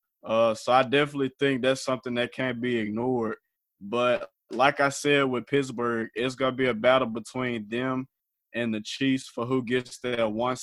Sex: male